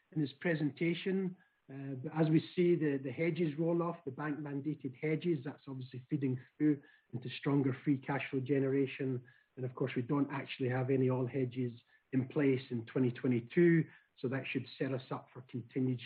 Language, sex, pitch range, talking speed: English, male, 130-160 Hz, 175 wpm